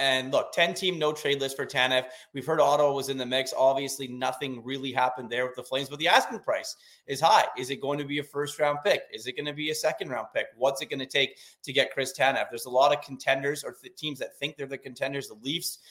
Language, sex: English, male